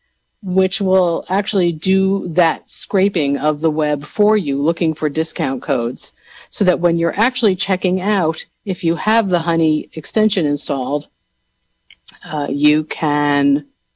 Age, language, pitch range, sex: 50-69, English, 150-185 Hz, female